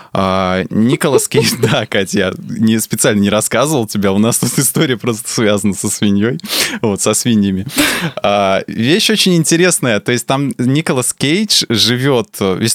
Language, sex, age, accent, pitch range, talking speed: Russian, male, 20-39, native, 100-125 Hz, 150 wpm